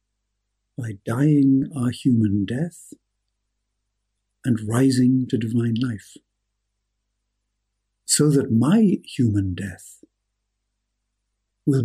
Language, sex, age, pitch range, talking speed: English, male, 60-79, 105-125 Hz, 80 wpm